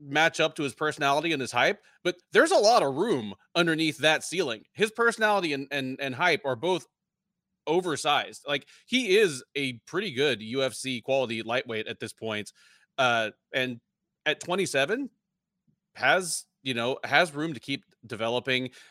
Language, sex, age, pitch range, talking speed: English, male, 30-49, 120-180 Hz, 155 wpm